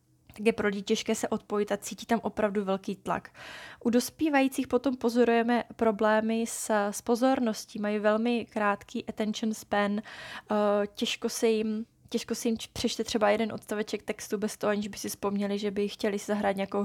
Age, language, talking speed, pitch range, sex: 20-39, Czech, 160 wpm, 200-225 Hz, female